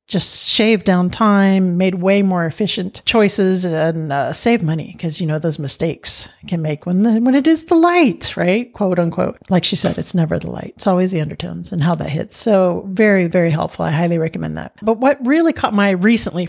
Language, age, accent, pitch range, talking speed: English, 50-69, American, 175-225 Hz, 215 wpm